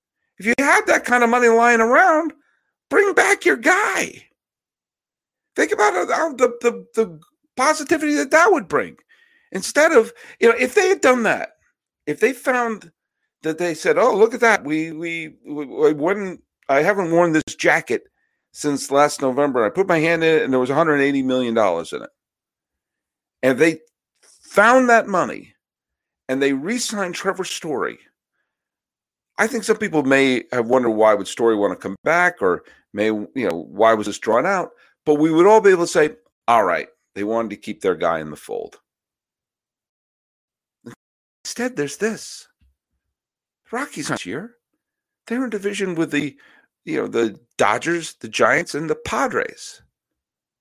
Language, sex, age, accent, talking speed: English, male, 50-69, American, 165 wpm